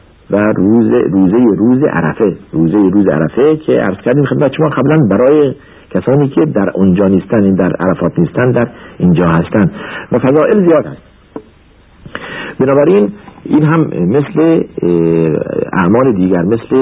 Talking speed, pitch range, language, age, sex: 130 wpm, 90-125 Hz, Persian, 50-69, male